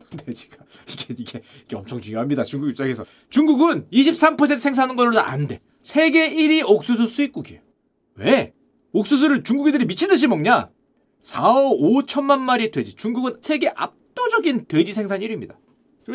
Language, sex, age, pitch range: Korean, male, 40-59, 190-280 Hz